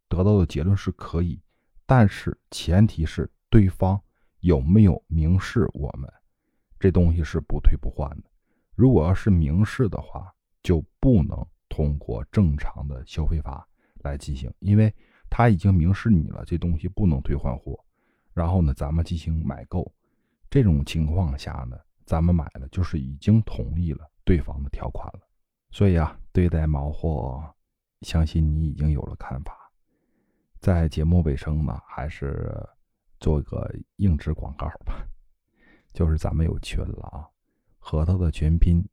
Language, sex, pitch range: Chinese, male, 75-95 Hz